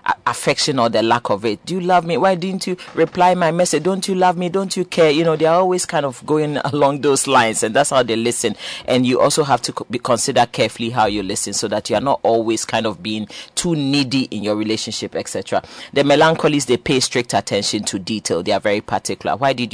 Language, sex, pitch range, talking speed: English, male, 120-160 Hz, 240 wpm